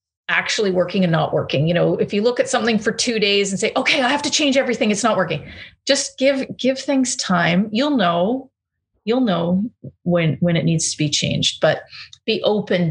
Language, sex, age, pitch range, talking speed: English, female, 30-49, 175-225 Hz, 210 wpm